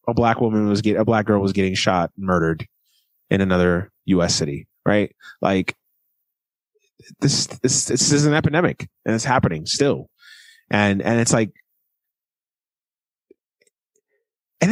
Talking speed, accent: 145 wpm, American